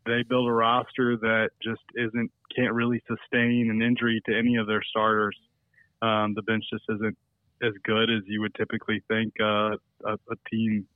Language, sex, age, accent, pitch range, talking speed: English, male, 20-39, American, 110-120 Hz, 180 wpm